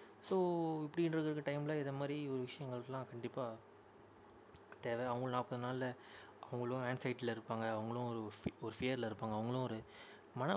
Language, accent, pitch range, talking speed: Tamil, native, 120-145 Hz, 135 wpm